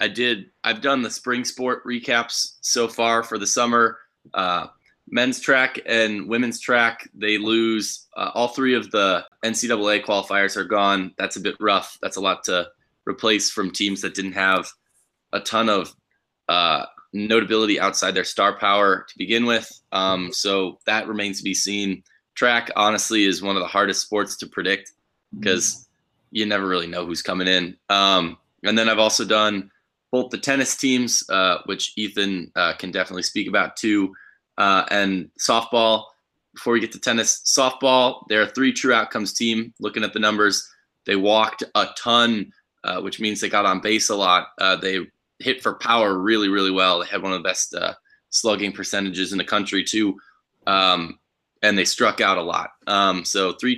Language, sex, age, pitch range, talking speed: English, male, 20-39, 95-115 Hz, 180 wpm